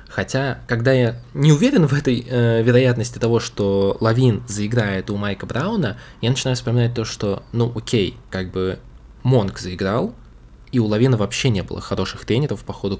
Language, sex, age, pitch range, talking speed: Russian, male, 20-39, 95-120 Hz, 170 wpm